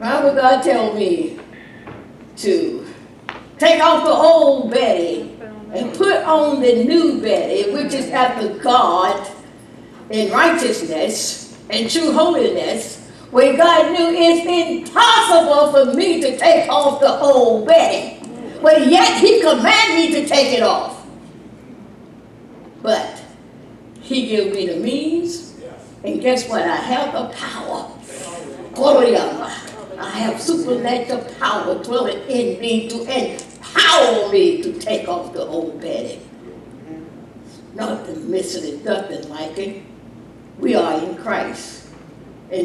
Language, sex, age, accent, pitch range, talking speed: English, female, 60-79, American, 220-325 Hz, 130 wpm